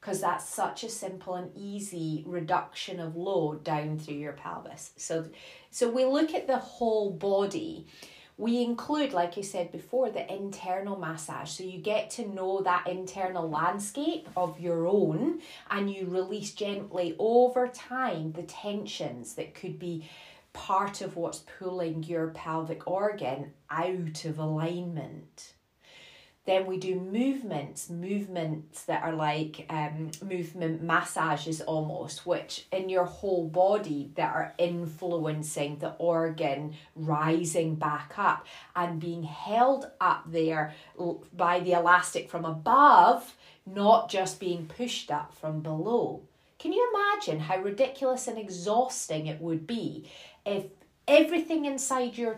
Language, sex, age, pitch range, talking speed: English, female, 30-49, 160-205 Hz, 135 wpm